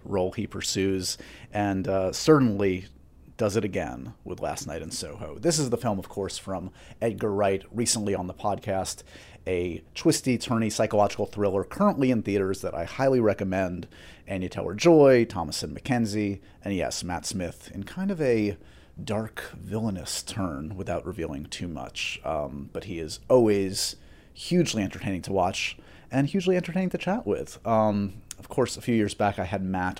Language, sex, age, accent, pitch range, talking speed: English, male, 30-49, American, 95-125 Hz, 165 wpm